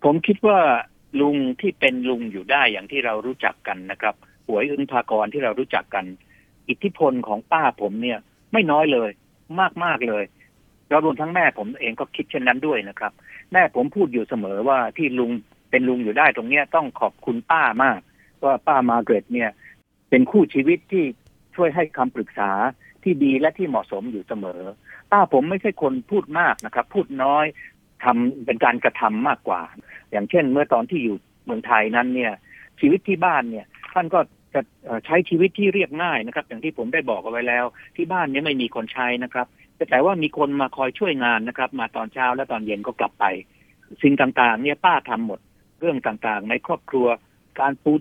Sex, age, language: male, 60-79, Thai